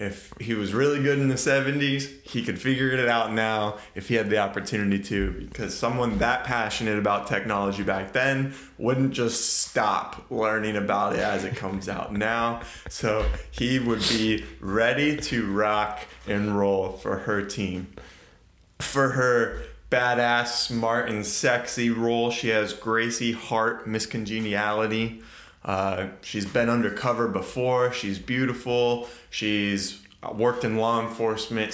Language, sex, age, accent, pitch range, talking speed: English, male, 20-39, American, 100-115 Hz, 145 wpm